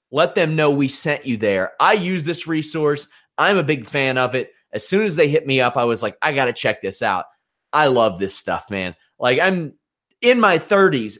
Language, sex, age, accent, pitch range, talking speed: English, male, 30-49, American, 130-170 Hz, 230 wpm